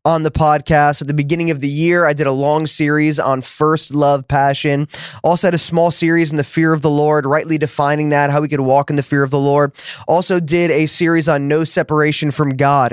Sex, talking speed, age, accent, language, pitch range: male, 235 wpm, 20-39, American, English, 145-165 Hz